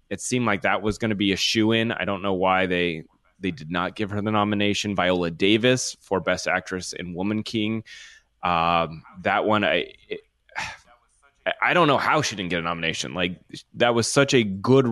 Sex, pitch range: male, 95-110 Hz